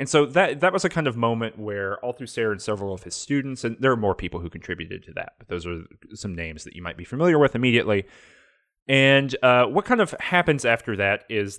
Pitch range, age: 95-130 Hz, 30-49